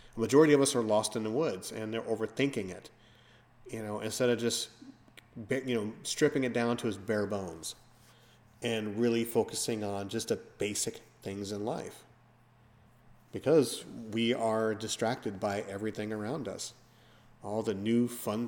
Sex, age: male, 40-59